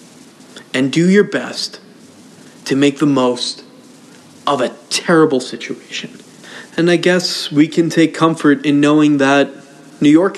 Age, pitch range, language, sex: 20-39, 130-165 Hz, English, male